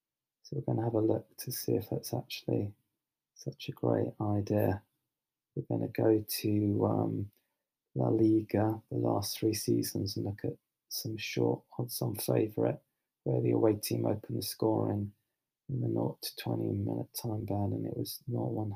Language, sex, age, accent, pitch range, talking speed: English, male, 20-39, British, 100-115 Hz, 170 wpm